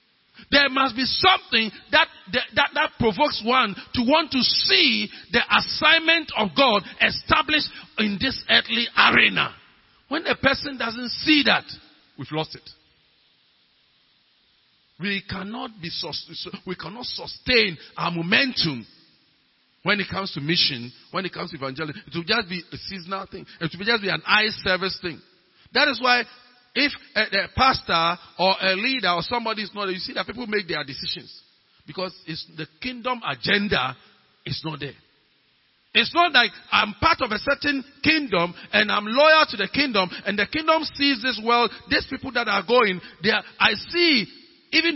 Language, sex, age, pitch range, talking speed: English, male, 50-69, 180-270 Hz, 170 wpm